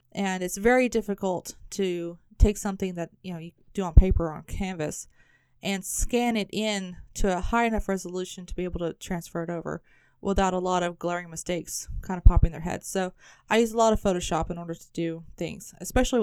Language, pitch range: English, 185-220 Hz